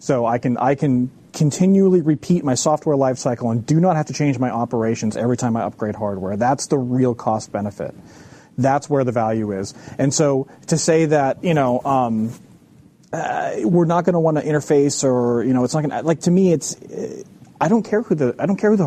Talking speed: 225 wpm